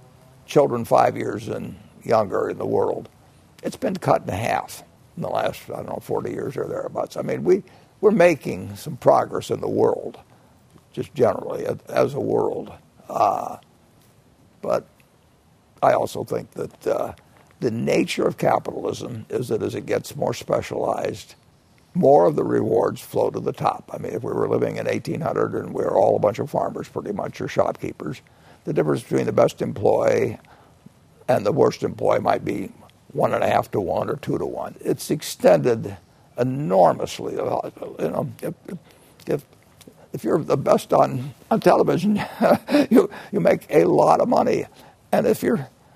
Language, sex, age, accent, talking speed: English, male, 60-79, American, 170 wpm